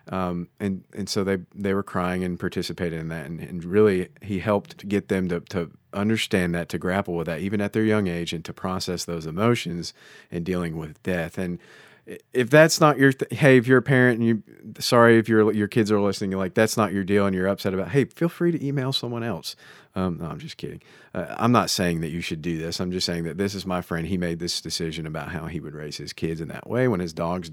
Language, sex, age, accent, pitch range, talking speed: English, male, 40-59, American, 90-120 Hz, 255 wpm